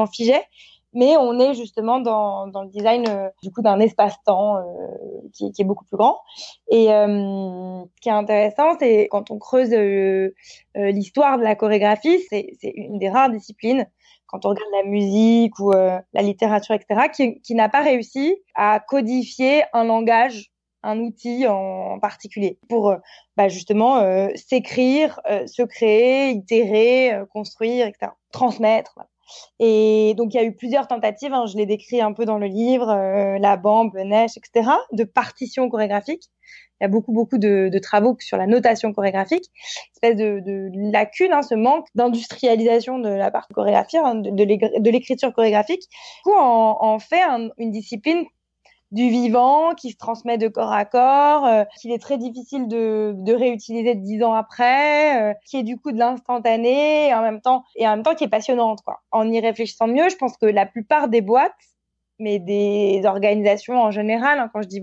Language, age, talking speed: French, 20-39, 190 wpm